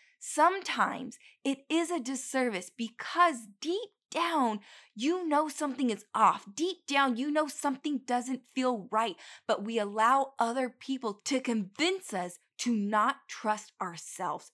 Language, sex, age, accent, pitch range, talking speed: English, female, 20-39, American, 195-265 Hz, 135 wpm